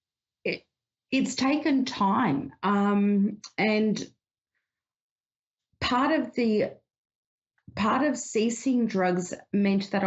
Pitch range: 175-215 Hz